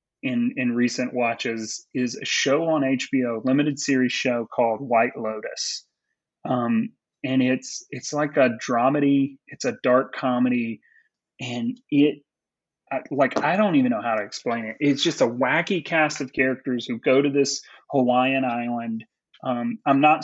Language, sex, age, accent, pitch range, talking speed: English, male, 30-49, American, 125-145 Hz, 155 wpm